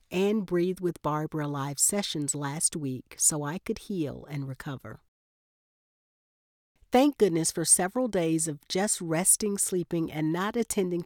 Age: 50-69